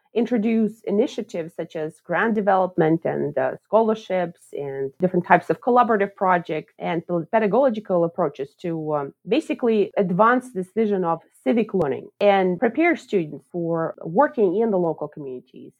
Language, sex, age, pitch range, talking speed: English, female, 30-49, 170-230 Hz, 135 wpm